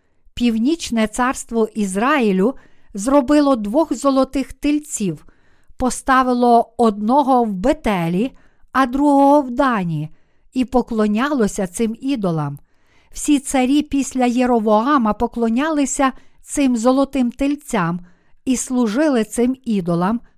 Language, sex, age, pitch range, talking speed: Ukrainian, female, 50-69, 220-270 Hz, 90 wpm